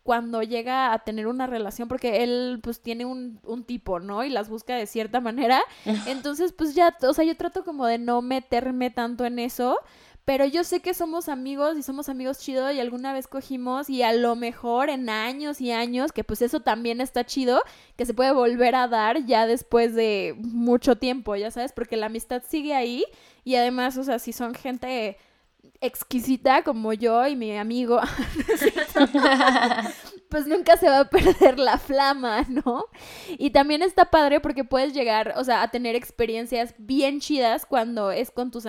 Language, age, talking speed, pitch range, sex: Spanish, 20-39, 185 wpm, 235-275 Hz, female